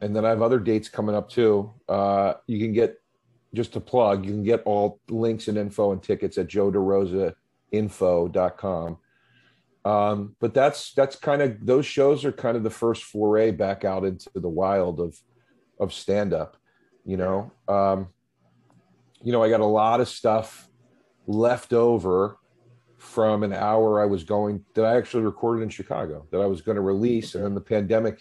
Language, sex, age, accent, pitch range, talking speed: English, male, 40-59, American, 100-115 Hz, 180 wpm